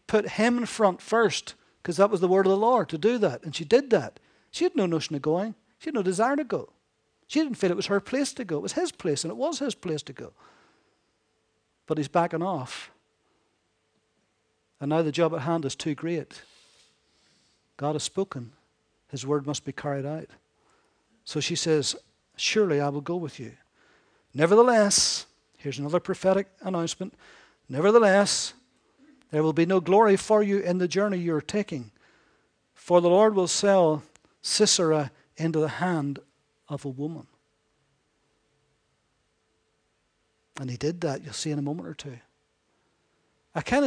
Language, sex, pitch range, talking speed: English, male, 150-195 Hz, 175 wpm